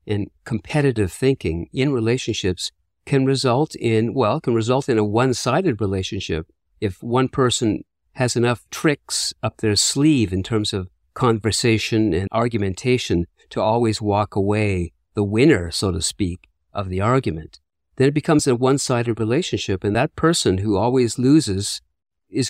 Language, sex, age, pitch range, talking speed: English, male, 50-69, 100-125 Hz, 150 wpm